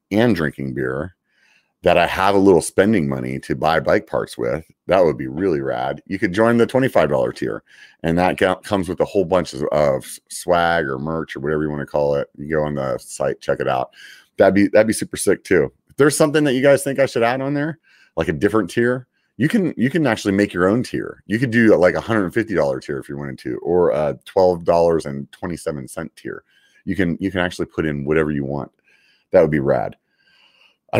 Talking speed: 240 wpm